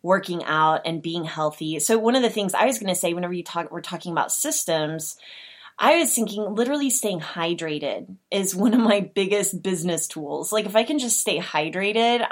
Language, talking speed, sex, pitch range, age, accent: English, 205 wpm, female, 165-215 Hz, 20-39, American